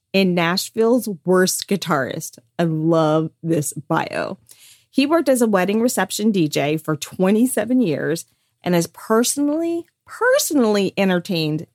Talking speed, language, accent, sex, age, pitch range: 115 wpm, English, American, female, 30-49, 150-195 Hz